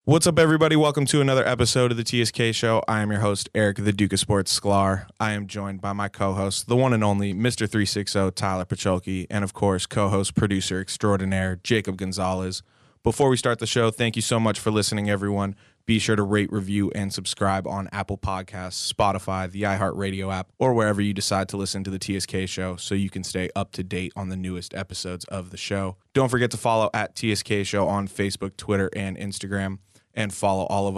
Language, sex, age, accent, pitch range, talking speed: English, male, 20-39, American, 95-105 Hz, 210 wpm